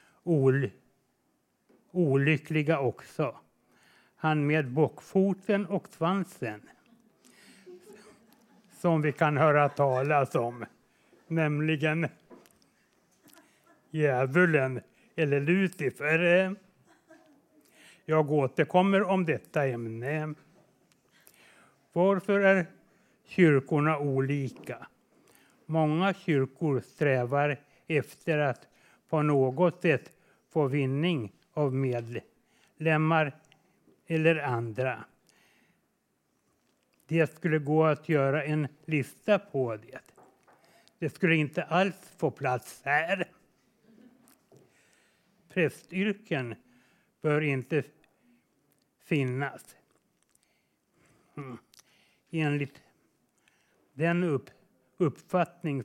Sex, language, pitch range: male, Swedish, 140-180 Hz